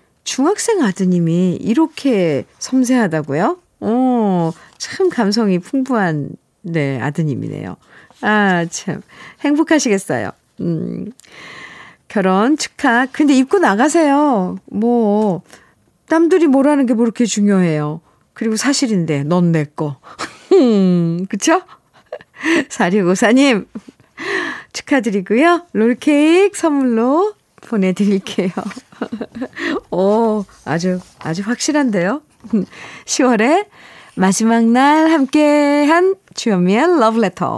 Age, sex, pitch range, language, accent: 50-69, female, 180-275 Hz, Korean, native